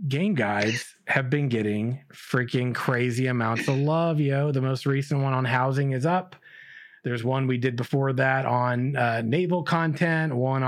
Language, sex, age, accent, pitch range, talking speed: English, male, 30-49, American, 135-190 Hz, 170 wpm